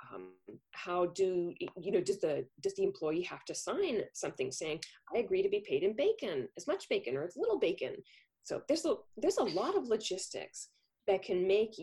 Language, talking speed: English, 195 wpm